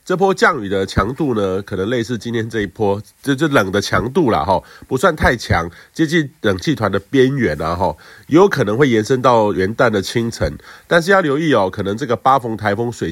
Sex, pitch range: male, 100-135 Hz